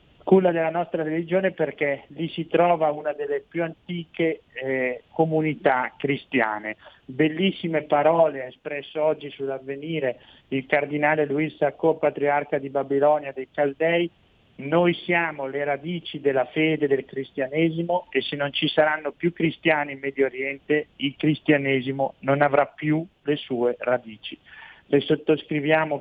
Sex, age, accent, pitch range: male, 40-59, native, 135-160 Hz